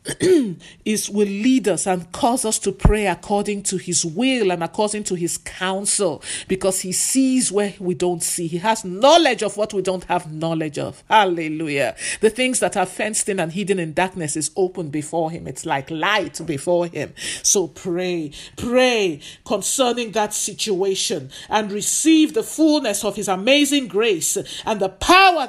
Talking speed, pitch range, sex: 165 wpm, 175-220 Hz, male